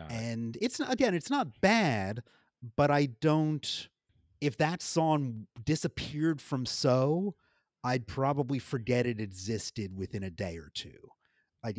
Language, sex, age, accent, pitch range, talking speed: English, male, 30-49, American, 105-145 Hz, 130 wpm